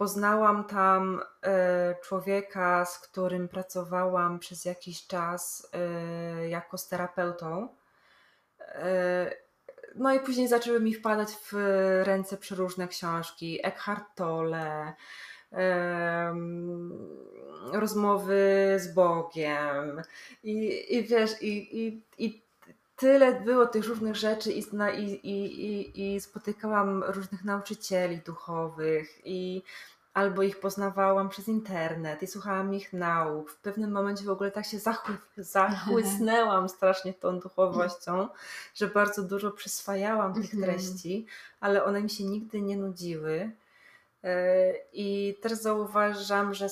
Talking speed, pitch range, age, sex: 105 wpm, 180-205 Hz, 20-39, female